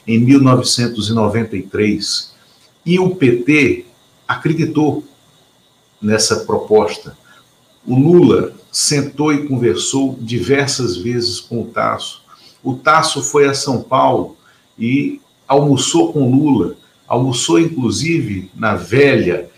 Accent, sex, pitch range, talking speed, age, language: Brazilian, male, 120-145 Hz, 100 wpm, 50-69, Portuguese